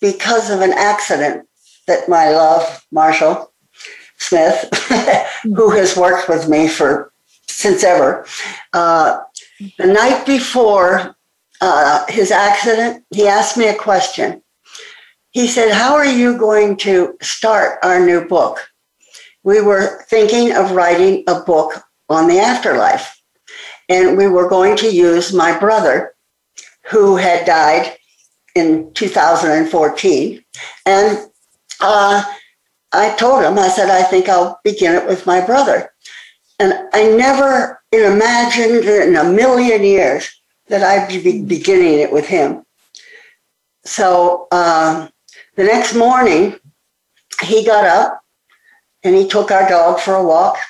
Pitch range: 180-235 Hz